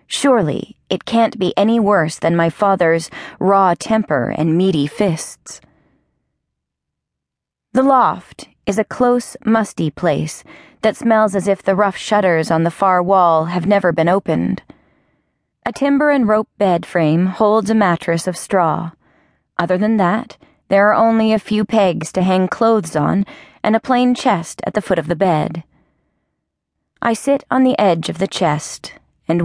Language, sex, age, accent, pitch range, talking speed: English, female, 30-49, American, 170-215 Hz, 160 wpm